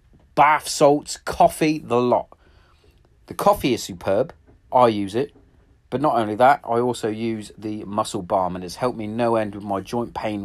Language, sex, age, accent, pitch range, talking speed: English, male, 30-49, British, 90-125 Hz, 185 wpm